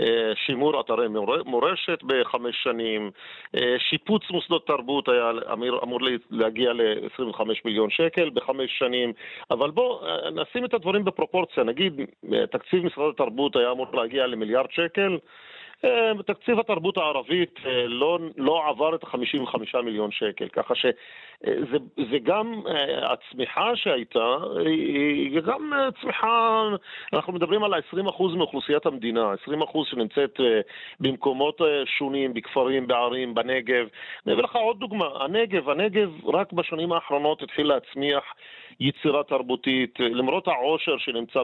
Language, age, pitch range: Hebrew, 40-59, 125-190 Hz